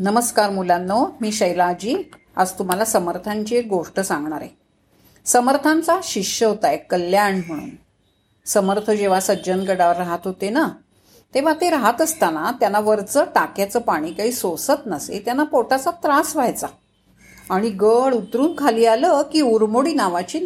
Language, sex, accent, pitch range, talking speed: Marathi, female, native, 195-265 Hz, 125 wpm